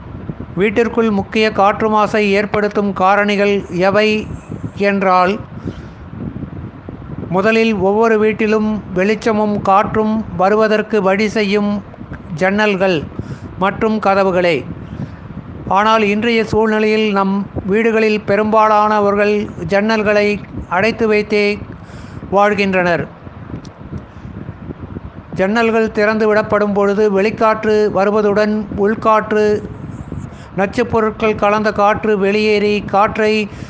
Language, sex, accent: Tamil, male, native